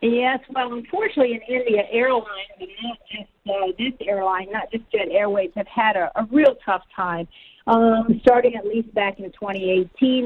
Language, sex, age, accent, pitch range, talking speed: English, female, 50-69, American, 195-235 Hz, 170 wpm